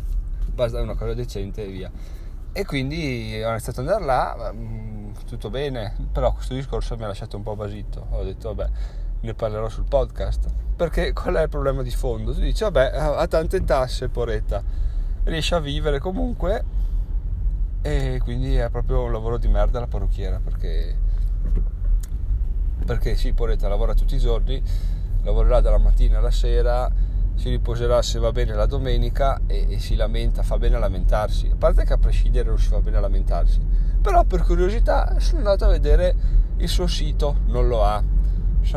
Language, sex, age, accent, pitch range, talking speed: Italian, male, 20-39, native, 90-120 Hz, 170 wpm